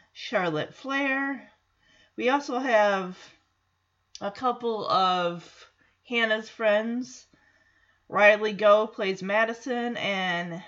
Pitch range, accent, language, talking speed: 170-245 Hz, American, English, 85 wpm